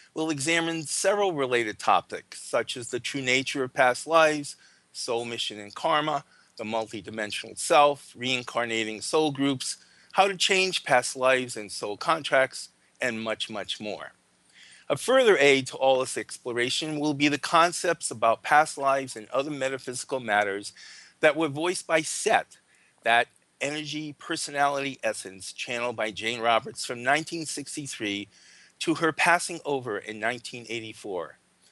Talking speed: 140 wpm